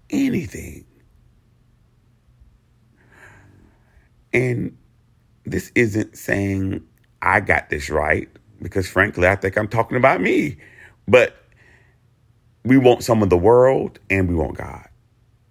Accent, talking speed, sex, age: American, 110 wpm, male, 40-59